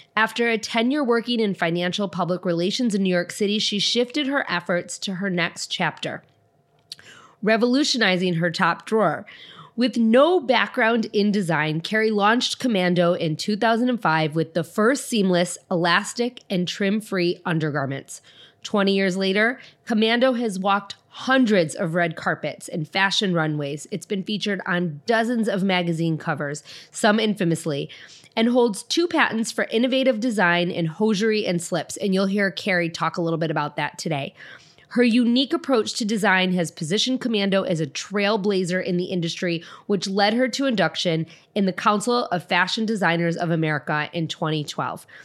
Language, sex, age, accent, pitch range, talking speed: English, female, 30-49, American, 170-220 Hz, 155 wpm